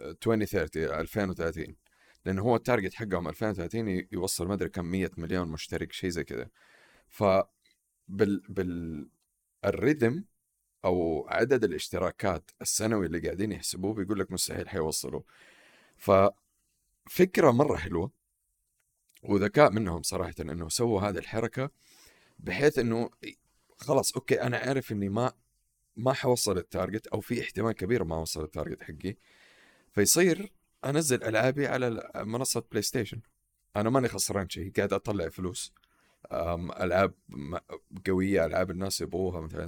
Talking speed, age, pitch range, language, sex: 120 wpm, 40-59, 90-115 Hz, Arabic, male